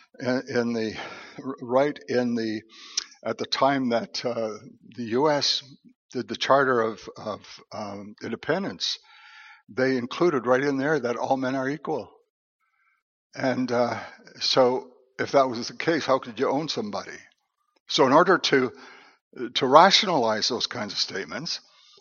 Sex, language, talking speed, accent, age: male, English, 140 wpm, American, 60-79